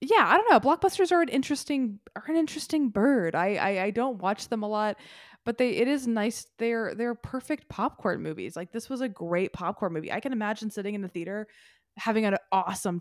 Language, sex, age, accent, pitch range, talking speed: English, female, 20-39, American, 175-230 Hz, 215 wpm